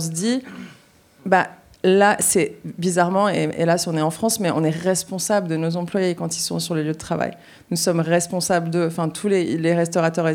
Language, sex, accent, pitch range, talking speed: French, female, French, 165-190 Hz, 225 wpm